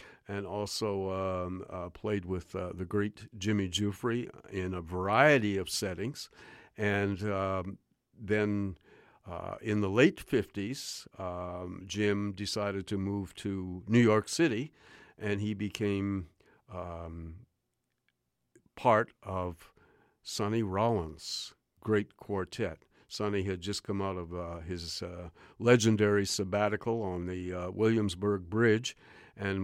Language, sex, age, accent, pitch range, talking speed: English, male, 50-69, American, 90-105 Hz, 120 wpm